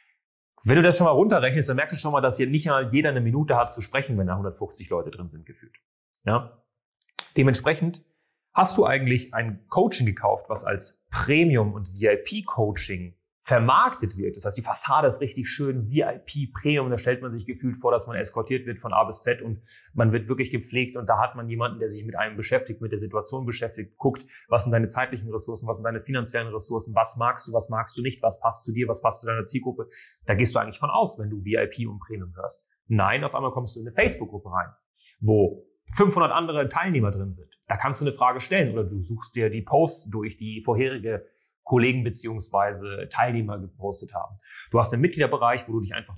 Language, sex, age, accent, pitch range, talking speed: German, male, 30-49, German, 110-130 Hz, 215 wpm